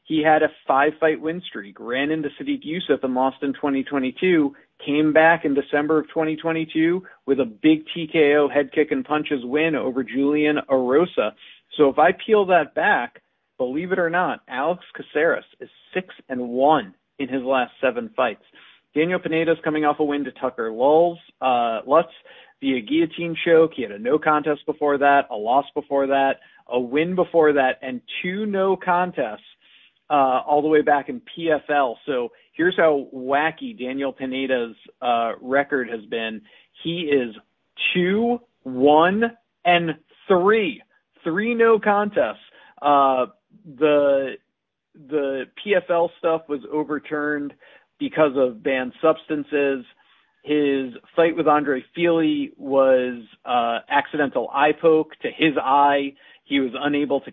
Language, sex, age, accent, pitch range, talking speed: English, male, 40-59, American, 140-165 Hz, 145 wpm